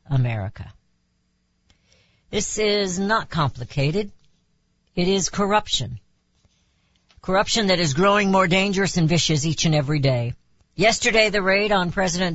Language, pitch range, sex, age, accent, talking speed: English, 125-190 Hz, female, 60-79, American, 120 wpm